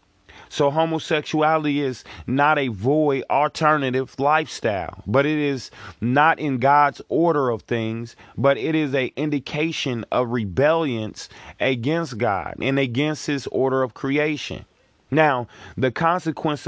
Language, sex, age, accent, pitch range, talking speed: English, male, 30-49, American, 120-145 Hz, 125 wpm